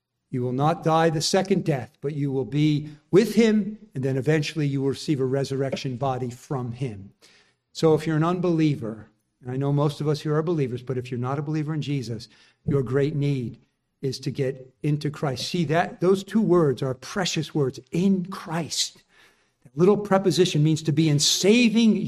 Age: 50-69